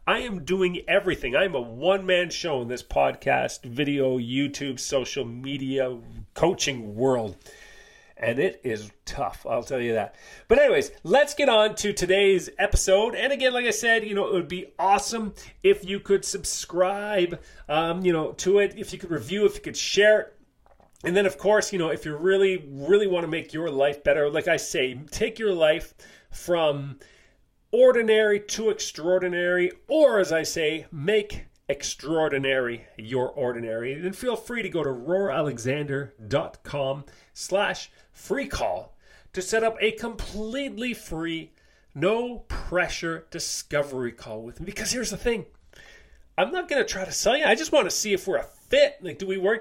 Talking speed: 175 wpm